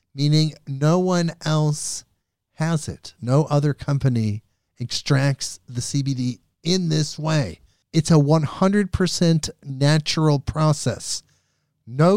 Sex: male